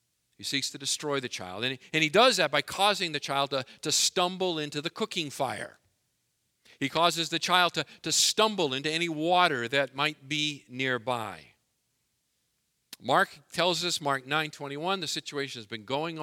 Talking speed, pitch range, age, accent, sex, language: 180 wpm, 125-165 Hz, 50-69, American, male, English